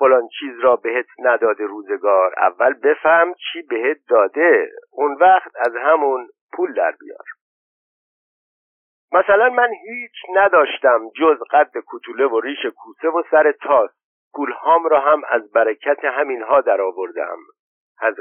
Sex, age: male, 50-69